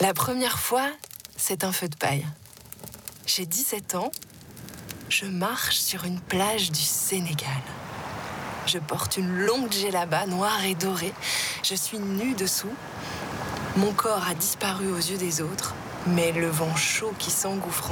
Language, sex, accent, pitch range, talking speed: French, female, French, 150-190 Hz, 145 wpm